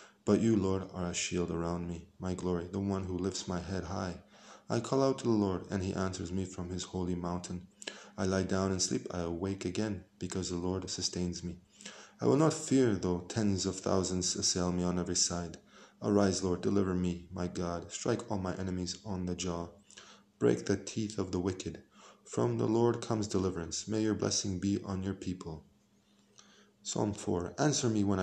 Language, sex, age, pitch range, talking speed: Hebrew, male, 20-39, 90-105 Hz, 200 wpm